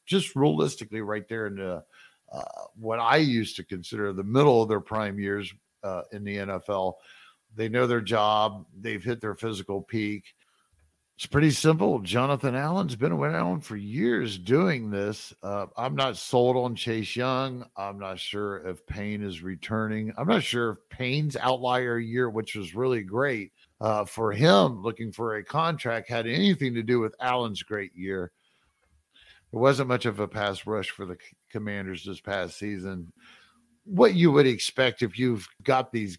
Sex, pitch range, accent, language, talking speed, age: male, 100-125 Hz, American, English, 170 wpm, 50-69